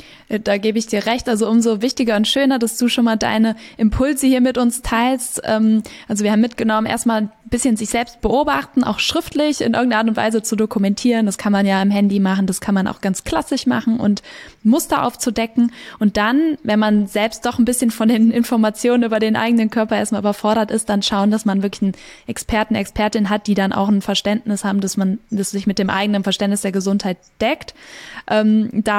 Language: English